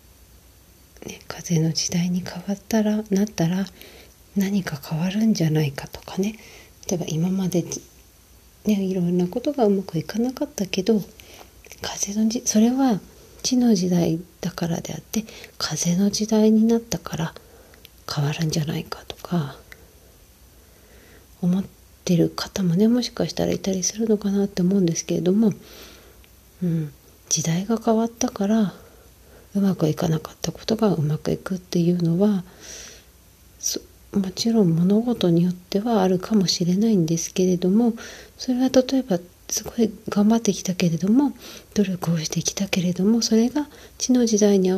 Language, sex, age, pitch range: Japanese, female, 40-59, 170-220 Hz